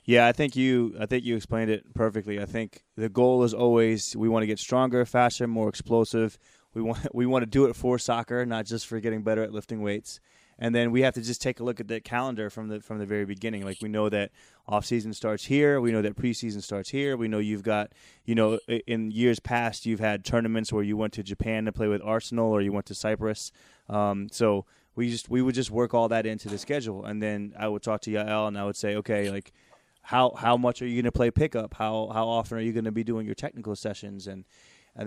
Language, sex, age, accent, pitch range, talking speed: English, male, 20-39, American, 105-120 Hz, 255 wpm